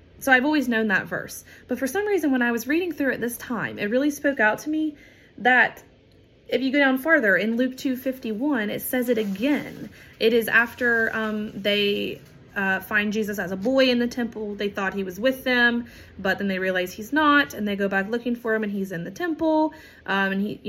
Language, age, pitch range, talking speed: English, 20-39, 200-255 Hz, 230 wpm